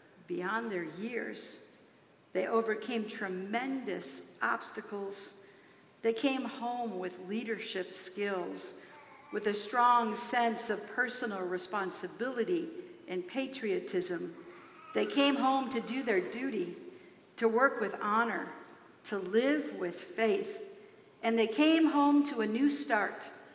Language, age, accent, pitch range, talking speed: English, 50-69, American, 215-275 Hz, 115 wpm